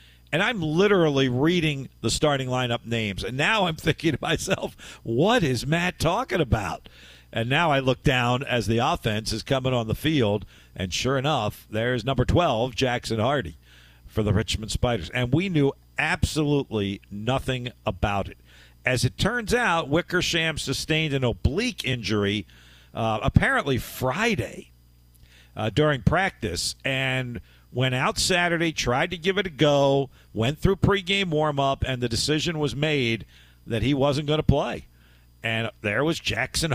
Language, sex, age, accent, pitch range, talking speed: English, male, 50-69, American, 110-155 Hz, 155 wpm